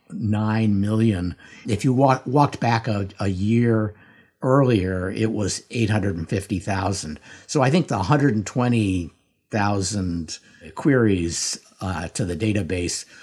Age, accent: 50-69, American